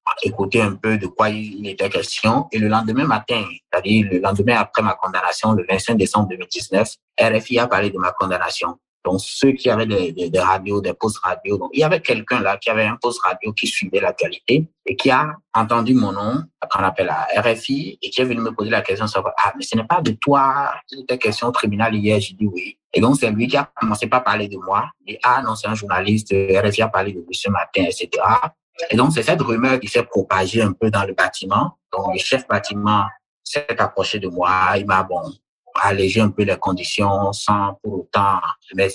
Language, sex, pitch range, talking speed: French, male, 95-115 Hz, 220 wpm